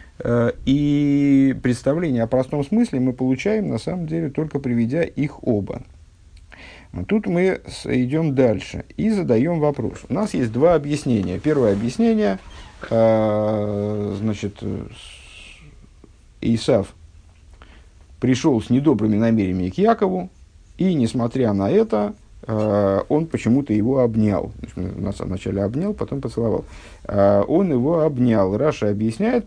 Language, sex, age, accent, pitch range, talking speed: Russian, male, 50-69, native, 95-145 Hz, 110 wpm